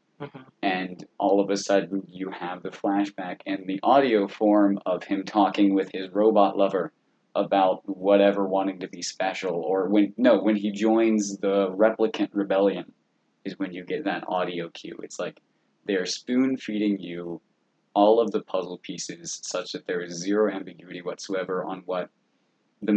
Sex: male